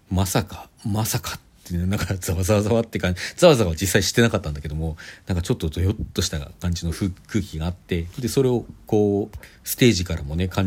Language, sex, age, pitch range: Japanese, male, 40-59, 90-125 Hz